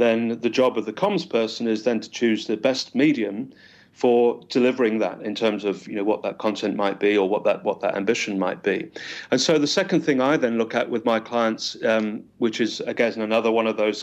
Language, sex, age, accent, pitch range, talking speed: English, male, 40-59, British, 110-130 Hz, 220 wpm